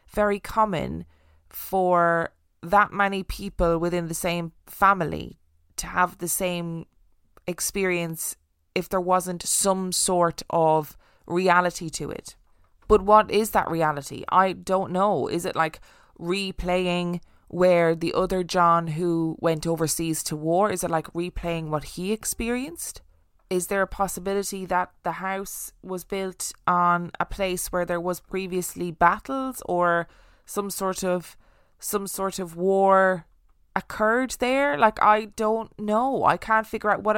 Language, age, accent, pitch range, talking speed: English, 20-39, Irish, 170-200 Hz, 140 wpm